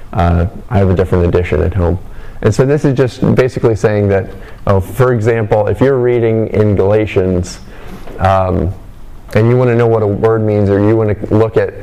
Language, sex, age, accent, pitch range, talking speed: English, male, 30-49, American, 95-110 Hz, 205 wpm